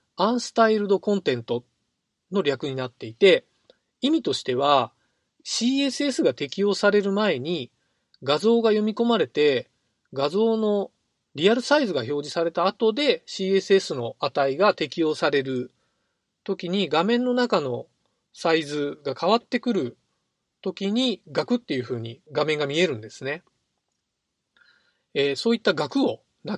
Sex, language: male, Japanese